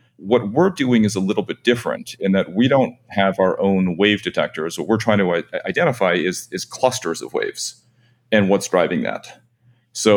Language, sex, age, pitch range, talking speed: English, male, 40-59, 95-120 Hz, 190 wpm